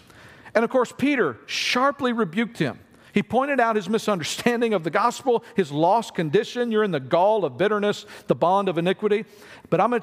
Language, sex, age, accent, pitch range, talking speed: English, male, 50-69, American, 160-220 Hz, 185 wpm